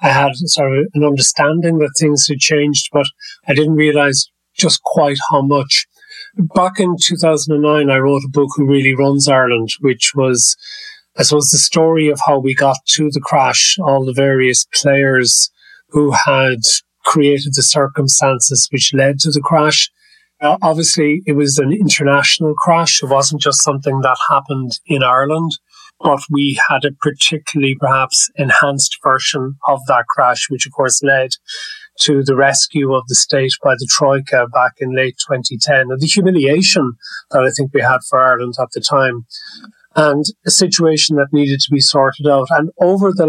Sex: male